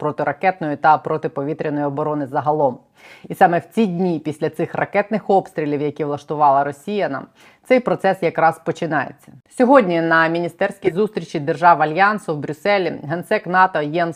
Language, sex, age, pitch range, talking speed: Ukrainian, female, 30-49, 165-205 Hz, 140 wpm